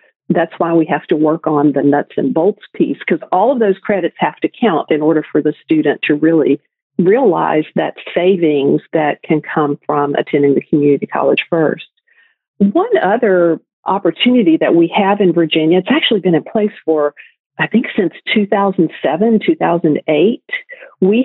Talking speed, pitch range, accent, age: 165 wpm, 155-210 Hz, American, 50-69